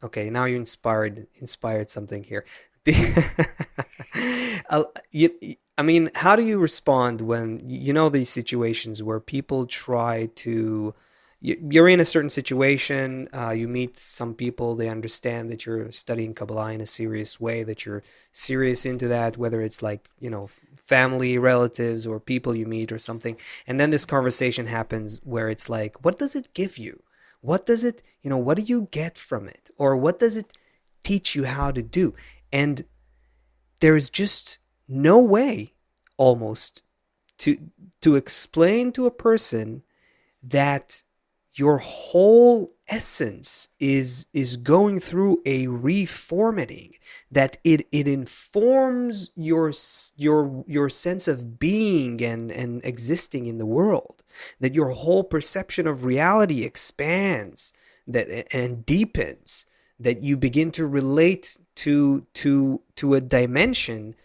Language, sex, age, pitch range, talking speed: English, male, 20-39, 120-165 Hz, 140 wpm